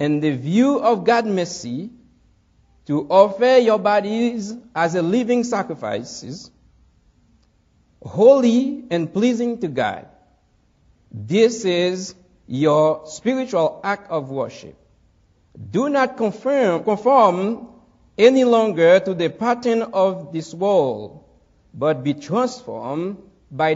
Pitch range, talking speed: 150-230 Hz, 105 wpm